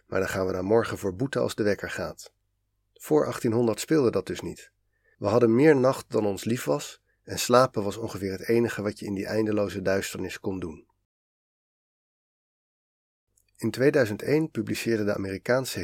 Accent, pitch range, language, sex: Dutch, 100-115 Hz, Dutch, male